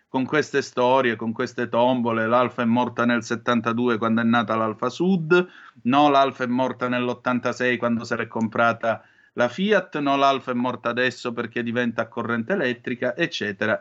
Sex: male